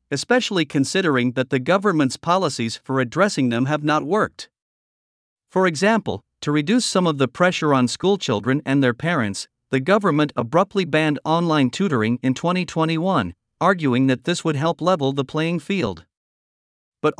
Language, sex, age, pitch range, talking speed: Vietnamese, male, 50-69, 130-175 Hz, 150 wpm